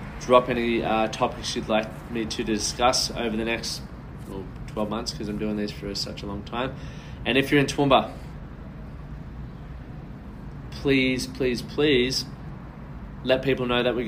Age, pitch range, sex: 20-39, 110-125 Hz, male